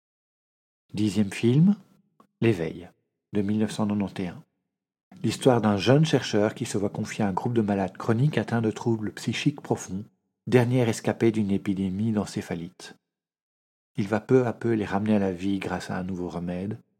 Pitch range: 100-125 Hz